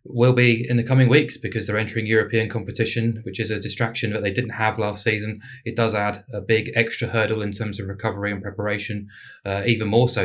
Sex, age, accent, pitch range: male, 20-39, British, 100-115 Hz